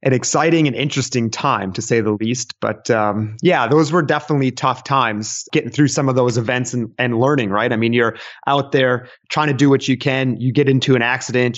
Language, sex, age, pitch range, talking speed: English, male, 30-49, 115-135 Hz, 225 wpm